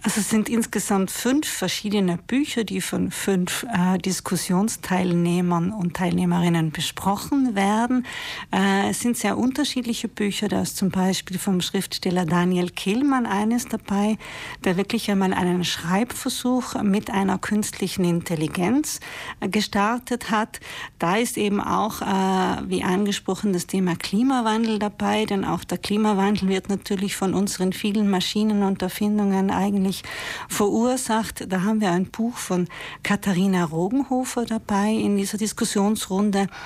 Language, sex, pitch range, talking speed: German, female, 185-220 Hz, 130 wpm